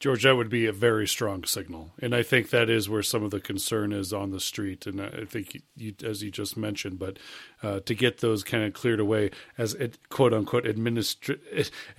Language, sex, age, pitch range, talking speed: English, male, 40-59, 110-130 Hz, 225 wpm